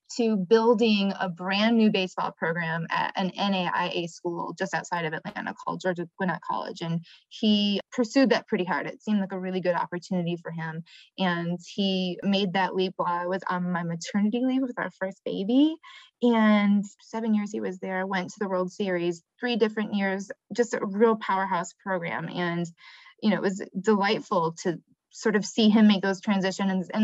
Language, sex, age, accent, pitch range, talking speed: English, female, 20-39, American, 180-215 Hz, 185 wpm